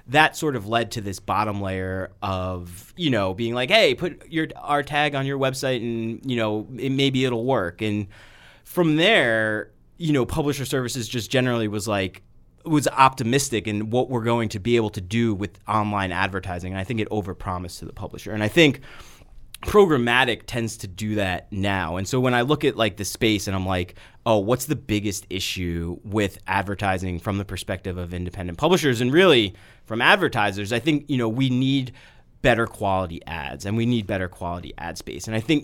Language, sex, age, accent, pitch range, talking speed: English, male, 30-49, American, 95-125 Hz, 200 wpm